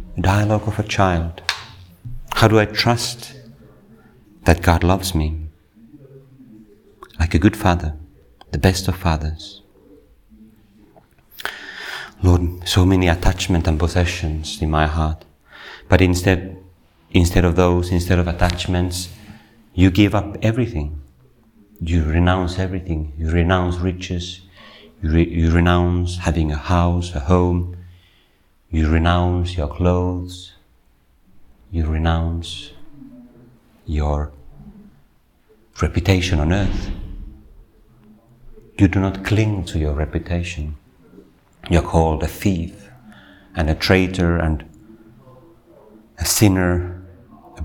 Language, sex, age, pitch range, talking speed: Finnish, male, 40-59, 85-105 Hz, 105 wpm